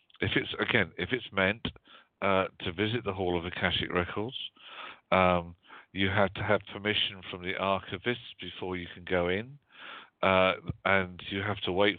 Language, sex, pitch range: English, male, 90-105 Hz